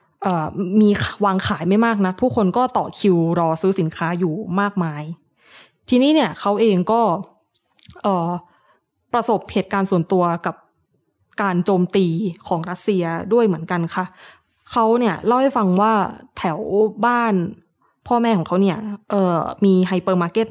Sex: female